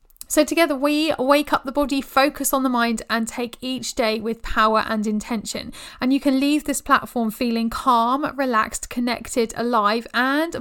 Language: English